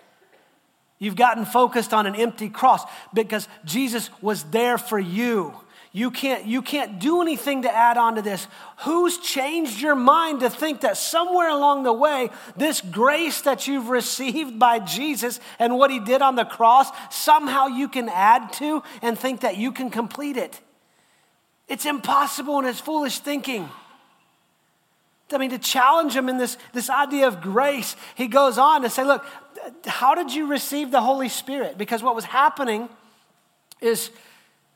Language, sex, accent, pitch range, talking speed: English, male, American, 215-265 Hz, 165 wpm